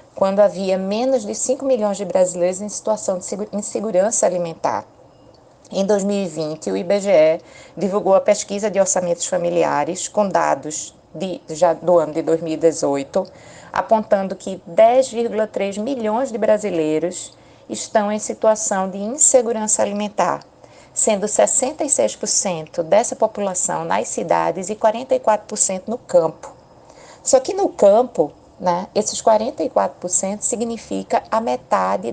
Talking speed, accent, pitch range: 120 wpm, Brazilian, 175-230 Hz